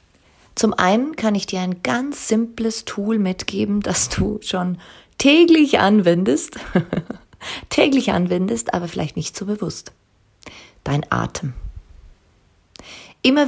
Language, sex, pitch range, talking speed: German, female, 140-205 Hz, 110 wpm